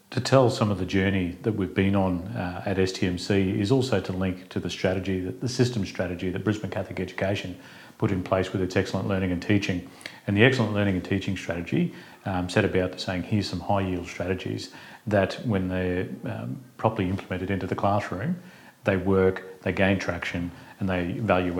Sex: male